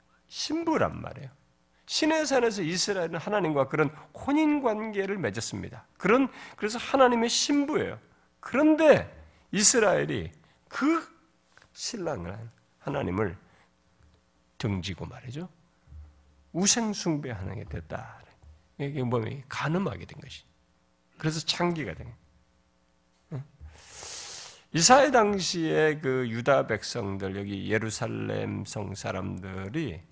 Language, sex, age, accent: Korean, male, 40-59, native